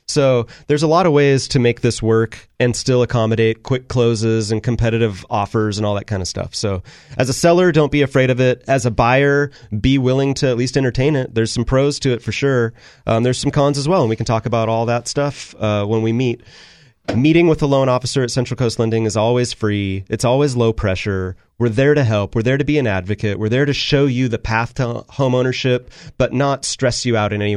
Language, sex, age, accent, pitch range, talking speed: English, male, 30-49, American, 110-130 Hz, 240 wpm